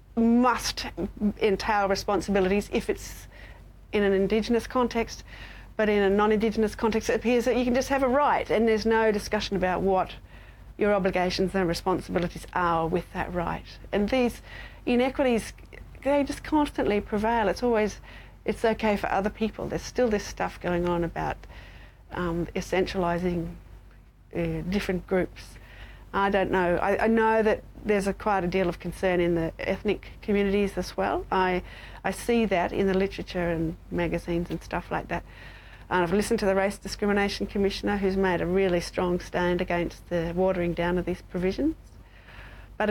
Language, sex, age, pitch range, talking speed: English, female, 40-59, 170-210 Hz, 160 wpm